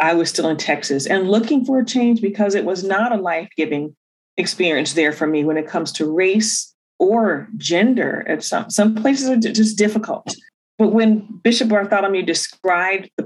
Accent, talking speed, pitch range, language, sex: American, 175 wpm, 170-230 Hz, English, female